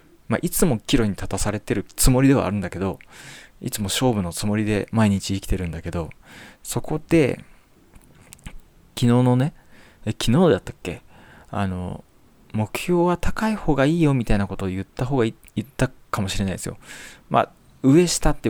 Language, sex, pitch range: Japanese, male, 100-155 Hz